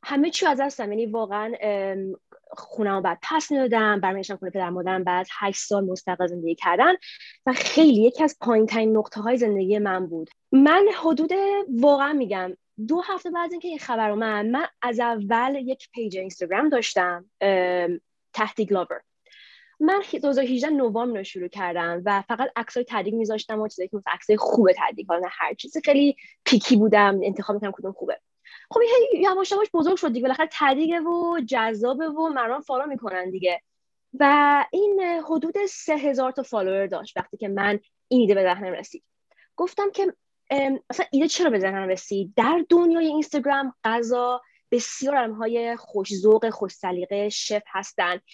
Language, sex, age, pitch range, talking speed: Persian, female, 20-39, 200-285 Hz, 160 wpm